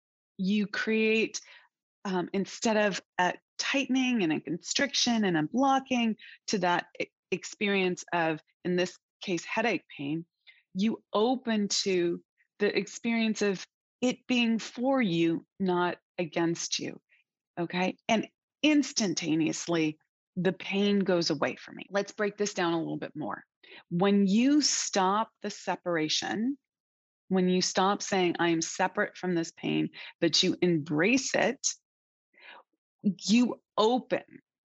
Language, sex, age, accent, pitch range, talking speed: English, female, 30-49, American, 175-220 Hz, 125 wpm